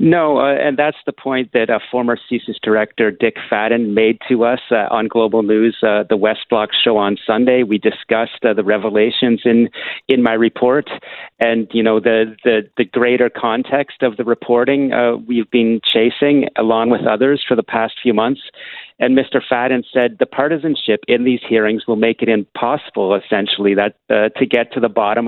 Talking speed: 190 wpm